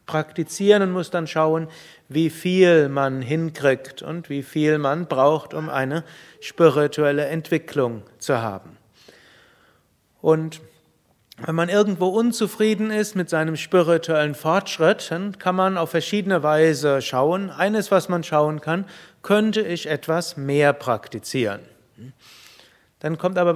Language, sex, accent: German, male, German